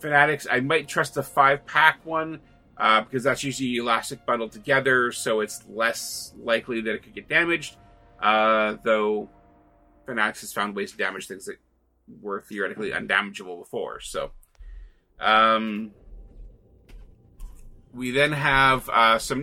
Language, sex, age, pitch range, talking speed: English, male, 30-49, 105-140 Hz, 135 wpm